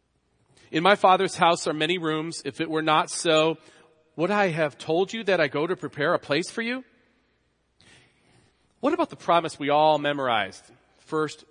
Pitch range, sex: 140-180 Hz, male